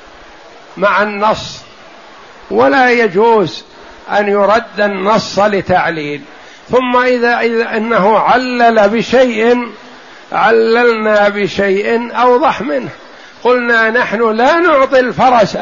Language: Arabic